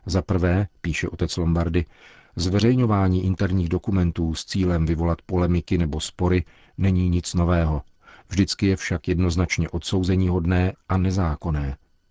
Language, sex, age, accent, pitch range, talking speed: Czech, male, 50-69, native, 85-95 Hz, 125 wpm